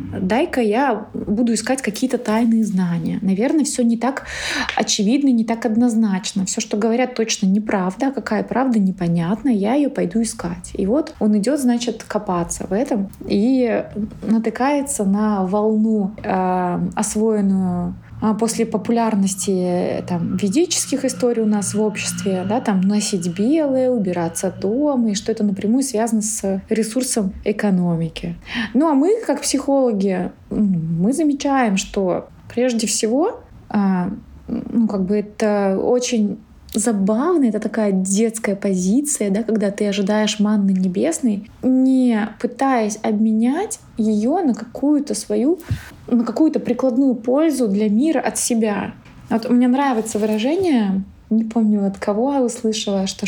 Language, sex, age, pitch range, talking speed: Russian, female, 20-39, 205-250 Hz, 130 wpm